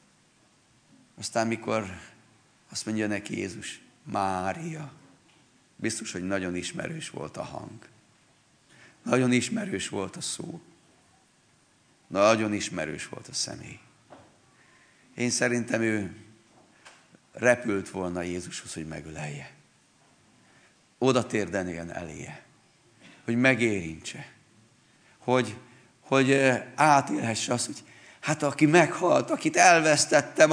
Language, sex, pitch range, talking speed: Hungarian, male, 100-145 Hz, 90 wpm